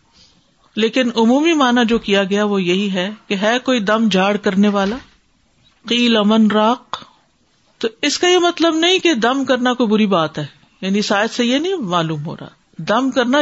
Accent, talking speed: Indian, 190 wpm